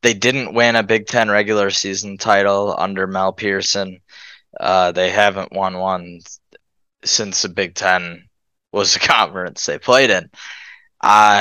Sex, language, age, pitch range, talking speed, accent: male, English, 10-29, 95-115 Hz, 145 wpm, American